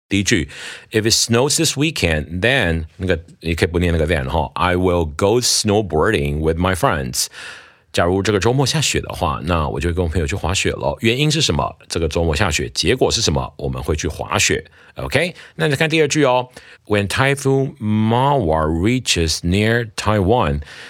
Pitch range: 80-115 Hz